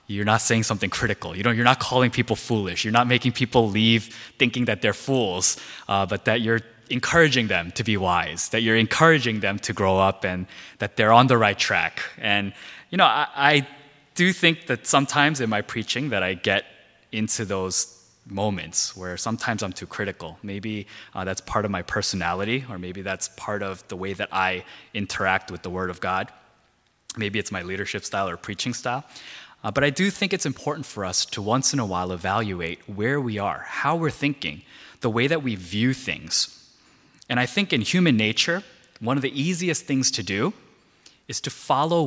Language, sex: Korean, male